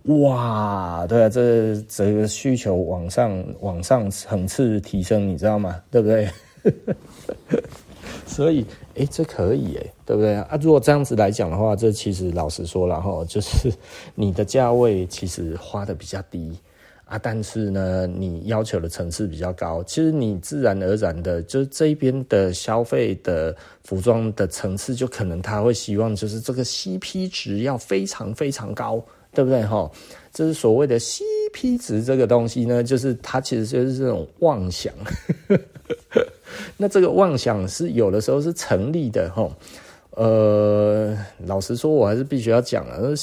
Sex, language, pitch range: male, Chinese, 95-130 Hz